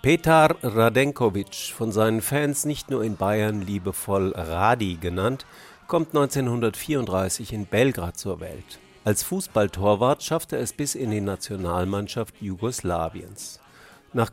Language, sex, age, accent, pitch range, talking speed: German, male, 50-69, German, 95-125 Hz, 120 wpm